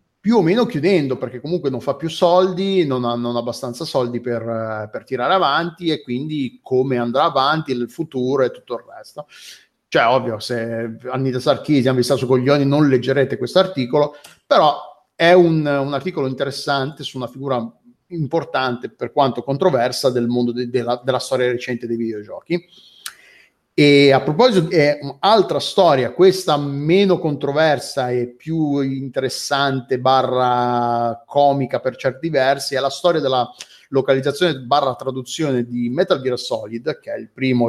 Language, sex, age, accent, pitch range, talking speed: Italian, male, 30-49, native, 125-145 Hz, 160 wpm